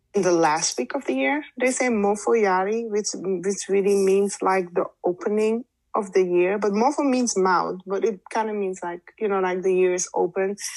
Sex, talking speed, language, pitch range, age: female, 210 wpm, English, 180-225 Hz, 20-39